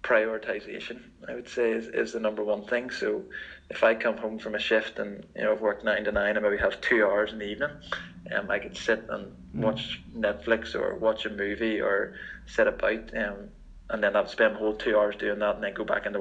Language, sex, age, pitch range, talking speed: English, male, 20-39, 105-115 Hz, 235 wpm